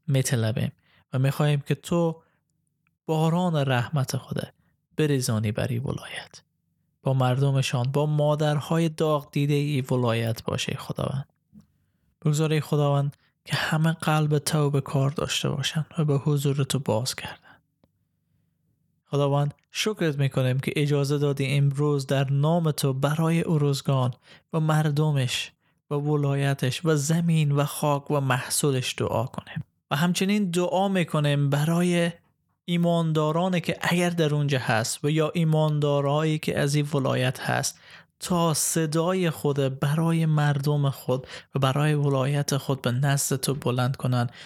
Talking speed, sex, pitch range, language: 125 wpm, male, 135-160 Hz, Persian